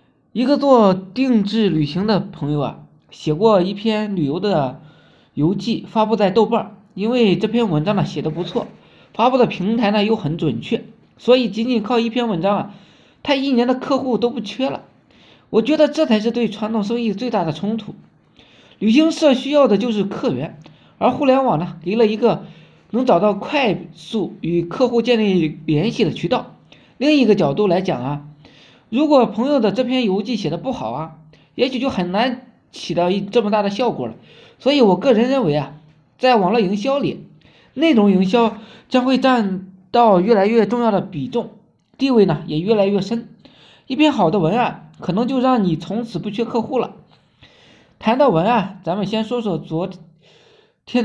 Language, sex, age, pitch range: Chinese, male, 20-39, 185-245 Hz